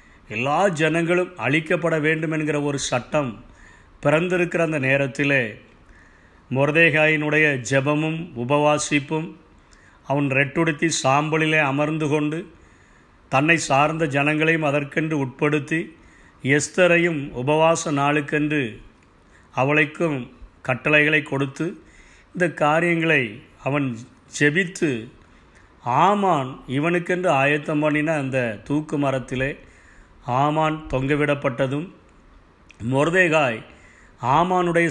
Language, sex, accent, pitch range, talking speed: Tamil, male, native, 130-160 Hz, 75 wpm